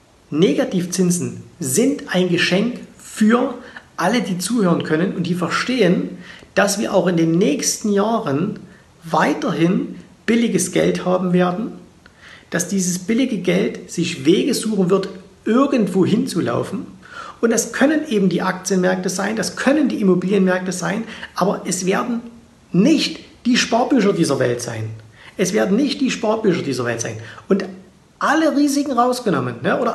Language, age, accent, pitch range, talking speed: German, 50-69, German, 180-230 Hz, 135 wpm